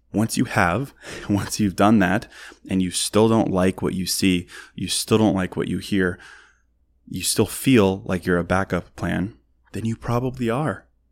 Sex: male